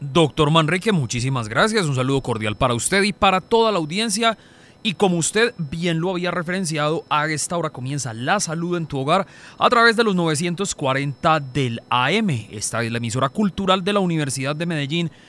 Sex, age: male, 30-49